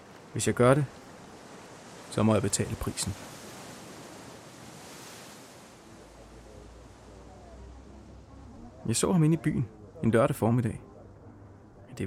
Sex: male